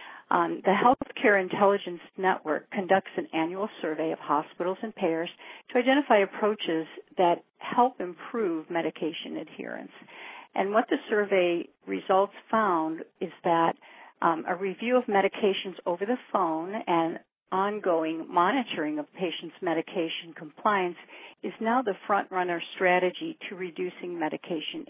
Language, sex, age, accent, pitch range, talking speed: English, female, 50-69, American, 165-210 Hz, 125 wpm